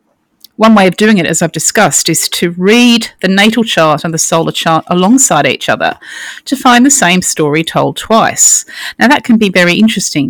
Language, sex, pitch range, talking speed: English, female, 165-215 Hz, 200 wpm